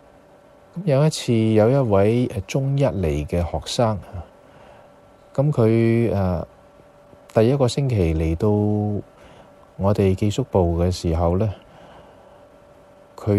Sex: male